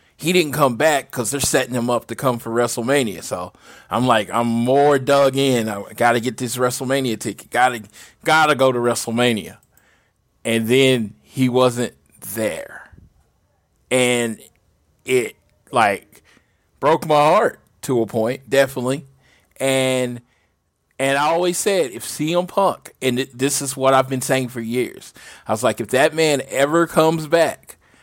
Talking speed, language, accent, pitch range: 160 wpm, English, American, 115-145 Hz